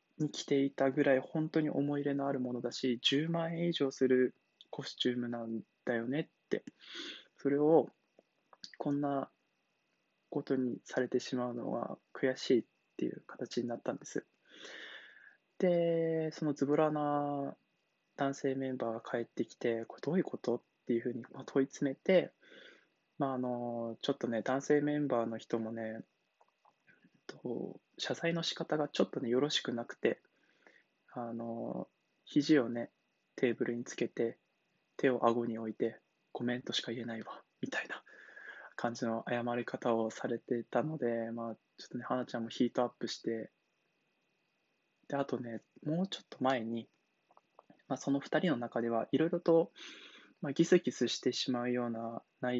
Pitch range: 120-145 Hz